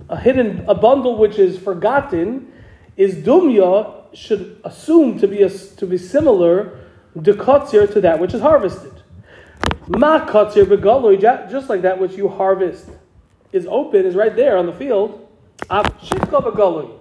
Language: English